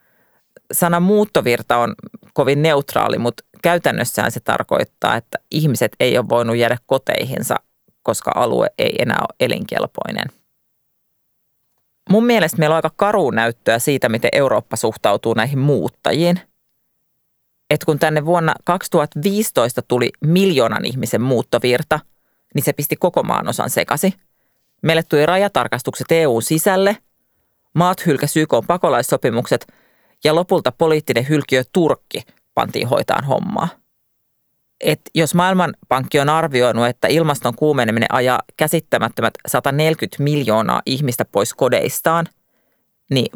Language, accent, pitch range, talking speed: Finnish, native, 125-175 Hz, 115 wpm